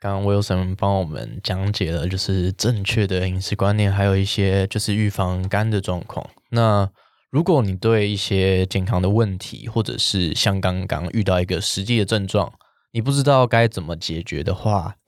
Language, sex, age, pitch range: Chinese, male, 10-29, 95-110 Hz